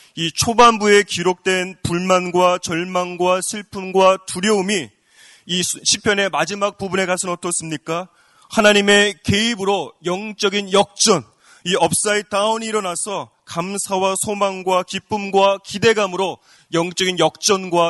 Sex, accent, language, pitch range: male, native, Korean, 175-205 Hz